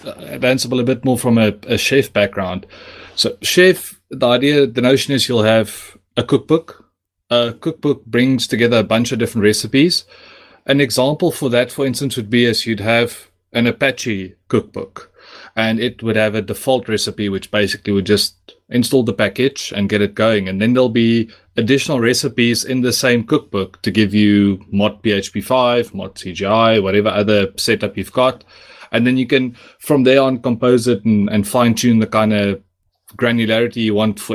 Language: English